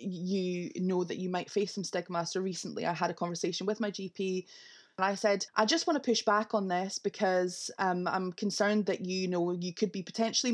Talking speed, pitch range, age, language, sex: 220 wpm, 185-225 Hz, 20-39, English, female